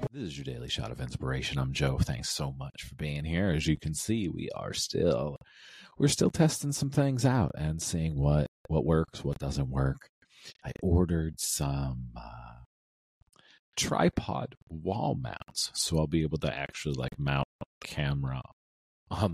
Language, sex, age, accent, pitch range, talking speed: English, male, 40-59, American, 70-90 Hz, 170 wpm